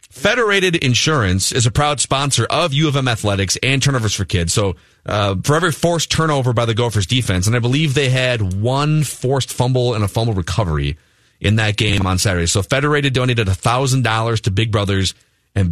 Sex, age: male, 40-59